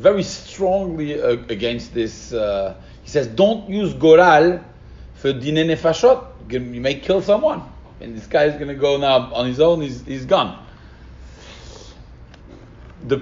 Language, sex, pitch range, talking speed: English, male, 105-155 Hz, 150 wpm